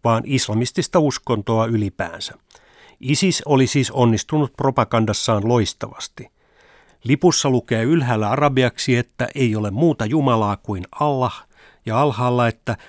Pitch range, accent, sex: 110-140 Hz, native, male